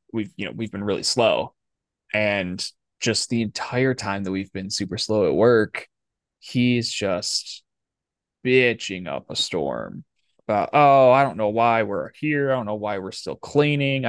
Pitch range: 105-130 Hz